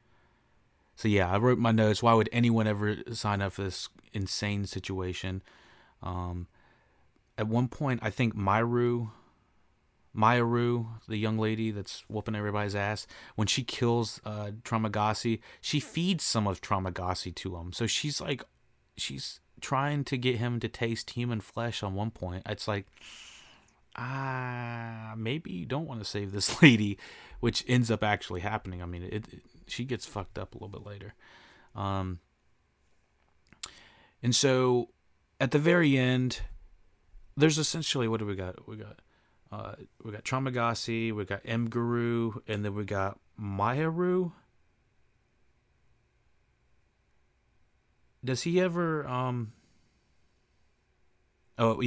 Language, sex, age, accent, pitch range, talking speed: English, male, 30-49, American, 95-120 Hz, 140 wpm